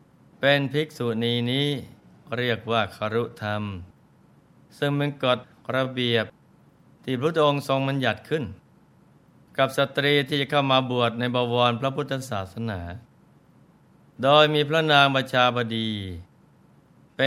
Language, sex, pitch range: Thai, male, 115-140 Hz